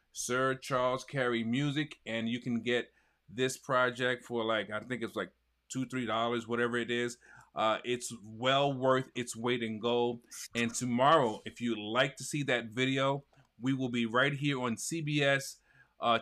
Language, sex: English, male